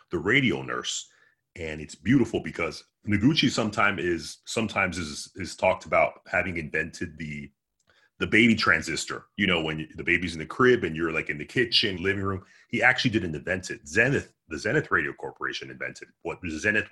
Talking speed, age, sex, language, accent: 175 wpm, 30-49, male, English, American